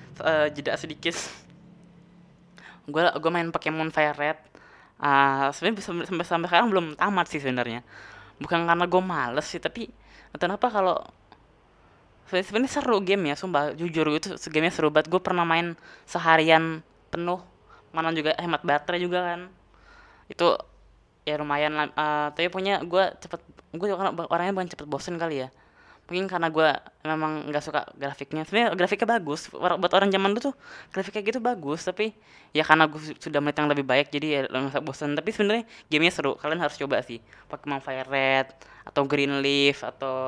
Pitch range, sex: 145-175 Hz, female